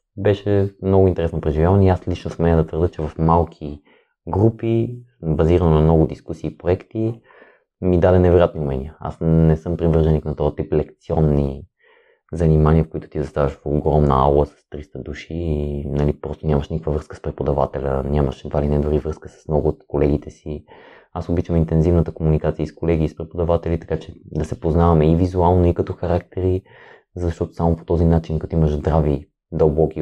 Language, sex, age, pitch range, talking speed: Bulgarian, male, 20-39, 75-90 Hz, 180 wpm